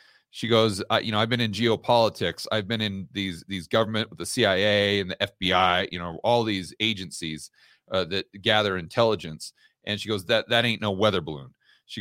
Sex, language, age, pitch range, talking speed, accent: male, English, 40-59, 100-120 Hz, 200 wpm, American